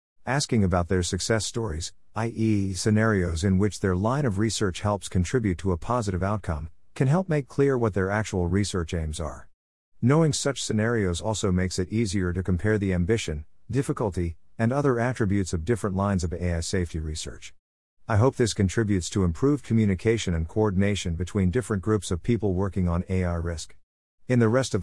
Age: 50-69